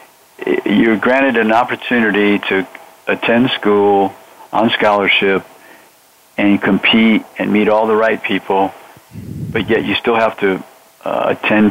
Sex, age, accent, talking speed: male, 50-69, American, 130 wpm